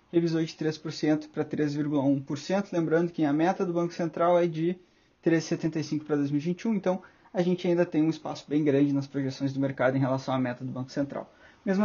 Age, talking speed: 20-39, 190 wpm